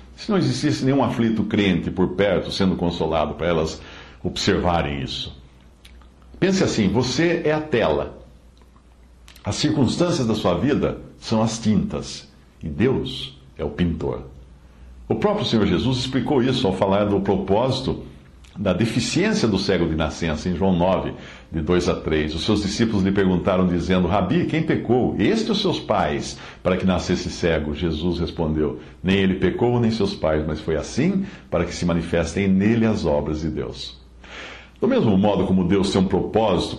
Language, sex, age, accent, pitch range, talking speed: English, male, 60-79, Brazilian, 75-110 Hz, 165 wpm